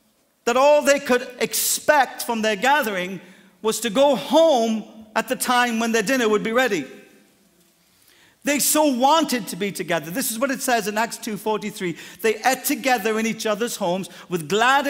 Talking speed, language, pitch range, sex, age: 175 wpm, English, 210-260 Hz, male, 50-69